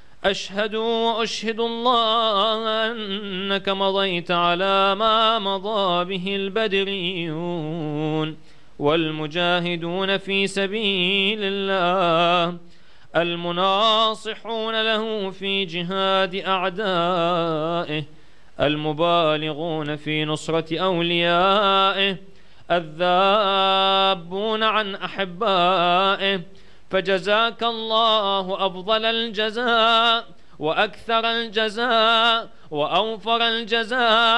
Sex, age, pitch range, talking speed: male, 30-49, 175-225 Hz, 60 wpm